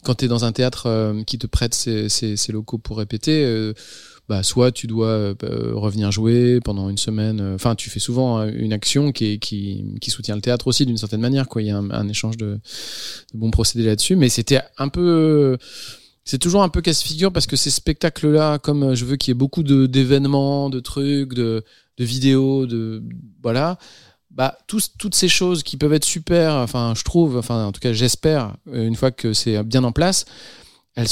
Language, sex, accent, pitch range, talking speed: French, male, French, 115-140 Hz, 200 wpm